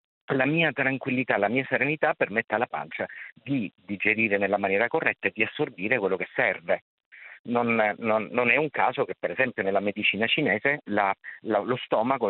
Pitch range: 100-130 Hz